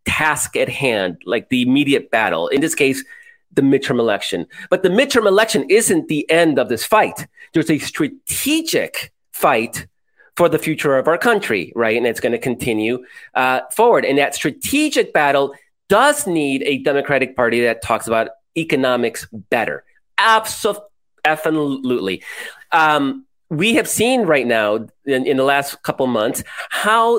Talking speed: 150 wpm